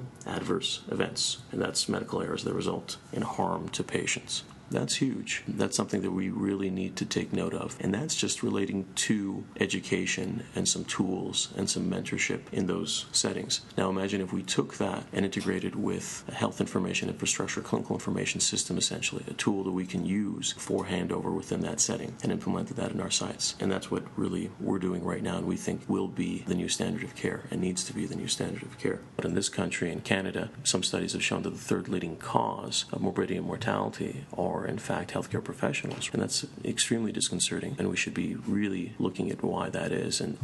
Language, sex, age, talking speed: English, male, 40-59, 205 wpm